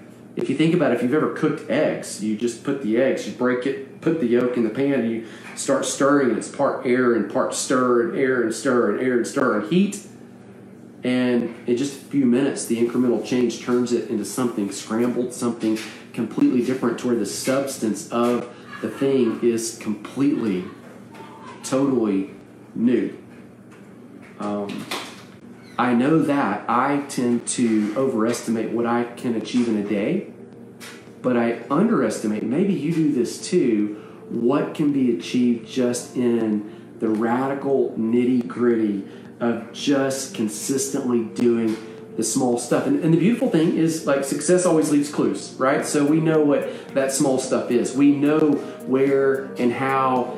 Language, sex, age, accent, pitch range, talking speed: English, male, 40-59, American, 115-140 Hz, 165 wpm